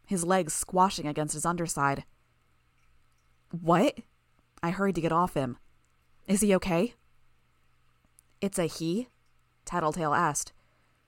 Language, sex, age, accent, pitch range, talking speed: English, female, 20-39, American, 145-195 Hz, 115 wpm